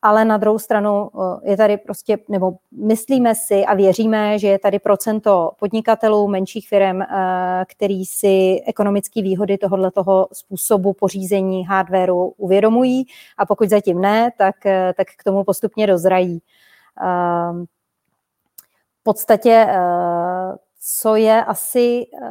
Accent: native